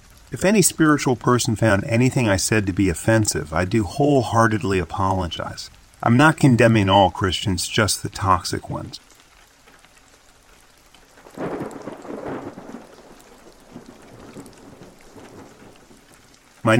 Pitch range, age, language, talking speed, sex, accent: 90-120 Hz, 40-59, English, 90 wpm, male, American